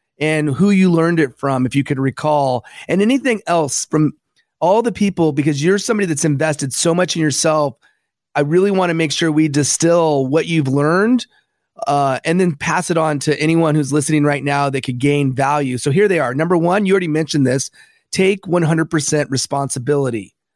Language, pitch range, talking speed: English, 145-185 Hz, 190 wpm